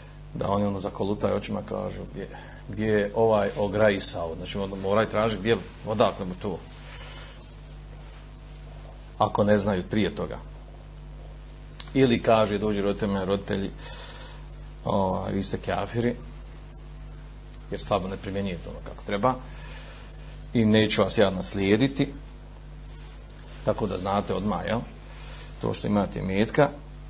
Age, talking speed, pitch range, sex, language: 40-59, 110 wpm, 100-110 Hz, male, Croatian